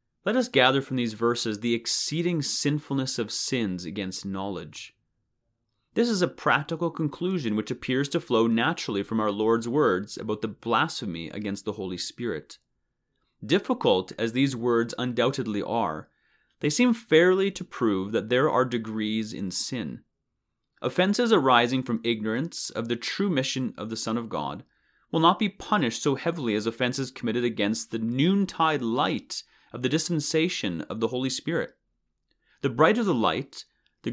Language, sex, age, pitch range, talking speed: English, male, 30-49, 110-150 Hz, 155 wpm